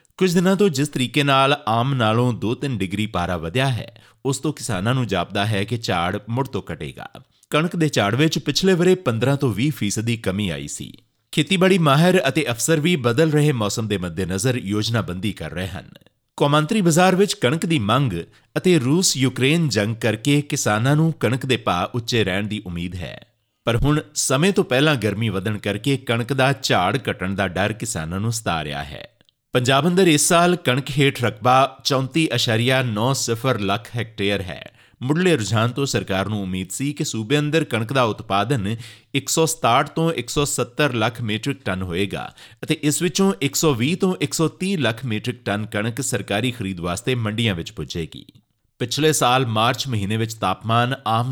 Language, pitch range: Punjabi, 105-145 Hz